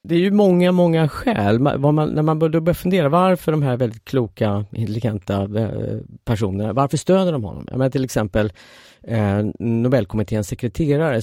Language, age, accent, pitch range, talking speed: Swedish, 40-59, native, 105-145 Hz, 160 wpm